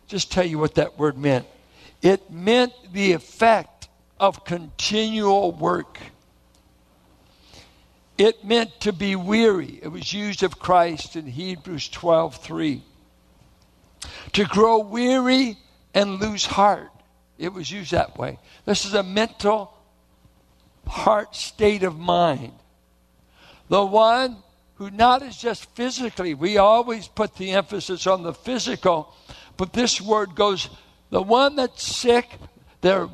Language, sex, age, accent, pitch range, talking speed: English, male, 60-79, American, 160-225 Hz, 130 wpm